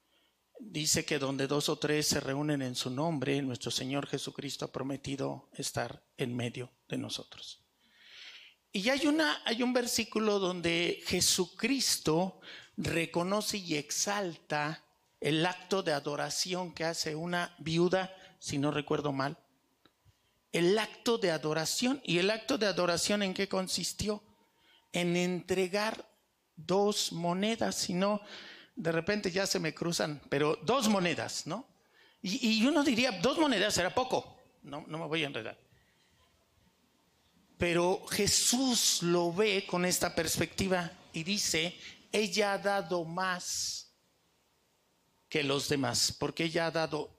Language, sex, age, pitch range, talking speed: Spanish, male, 50-69, 150-200 Hz, 135 wpm